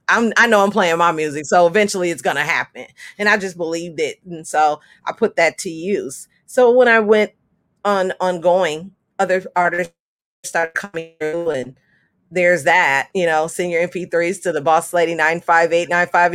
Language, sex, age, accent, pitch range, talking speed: English, female, 40-59, American, 165-215 Hz, 175 wpm